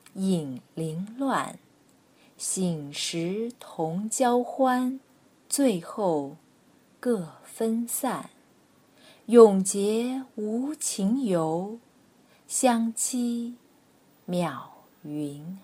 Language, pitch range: Chinese, 165-250 Hz